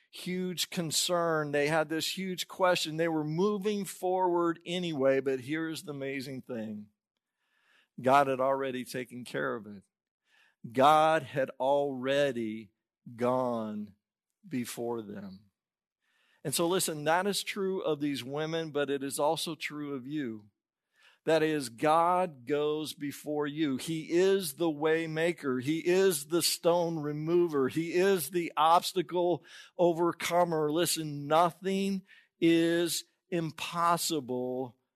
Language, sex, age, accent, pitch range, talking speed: English, male, 50-69, American, 135-170 Hz, 120 wpm